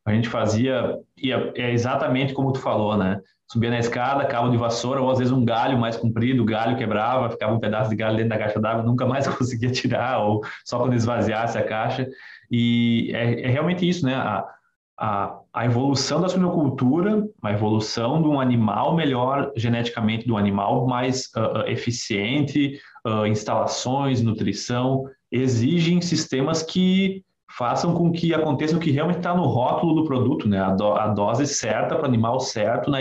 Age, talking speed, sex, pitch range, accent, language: 20-39, 180 wpm, male, 115-155 Hz, Brazilian, Portuguese